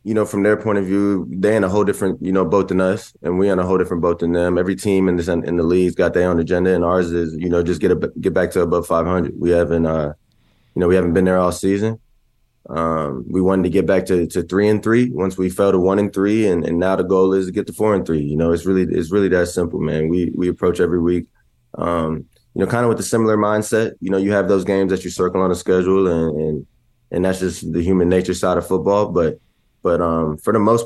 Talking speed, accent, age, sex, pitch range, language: 280 wpm, American, 20-39, male, 90-100 Hz, English